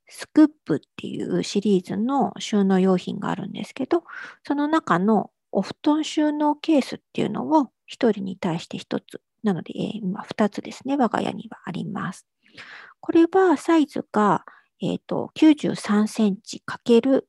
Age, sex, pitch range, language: 50-69, female, 185-260 Hz, Japanese